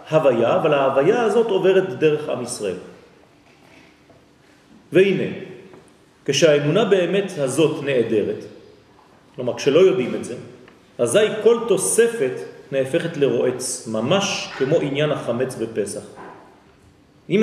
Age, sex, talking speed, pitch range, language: 40-59, male, 100 wpm, 135-190 Hz, French